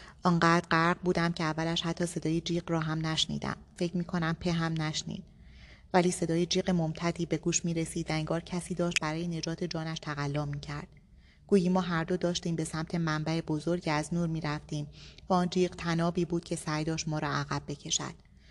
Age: 30-49